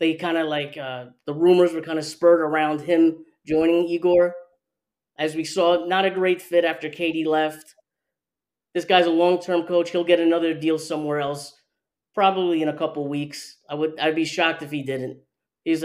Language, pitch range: English, 155-190 Hz